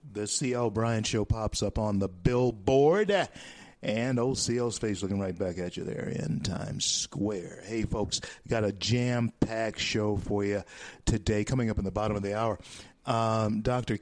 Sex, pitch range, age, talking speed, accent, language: male, 110-160 Hz, 50-69, 175 wpm, American, English